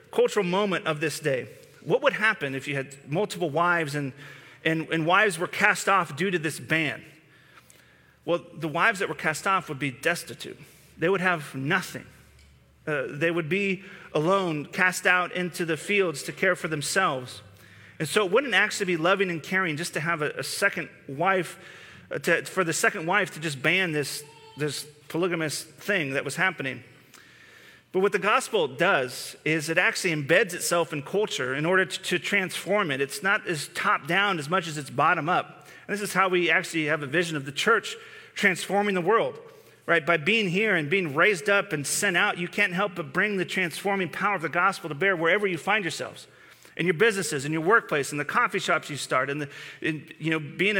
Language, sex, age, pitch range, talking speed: English, male, 30-49, 155-200 Hz, 205 wpm